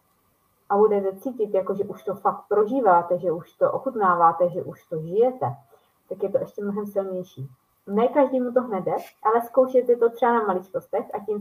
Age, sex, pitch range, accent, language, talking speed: 20-39, female, 185-230 Hz, native, Czech, 185 wpm